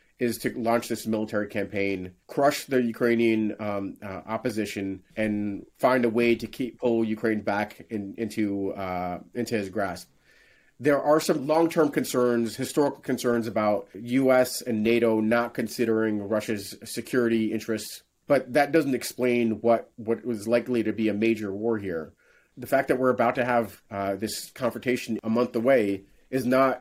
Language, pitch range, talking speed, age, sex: English, 105-125 Hz, 160 wpm, 30-49, male